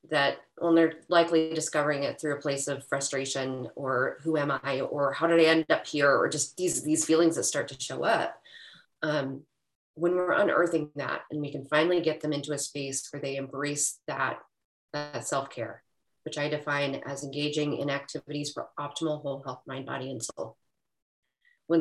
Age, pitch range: 30-49, 145-165 Hz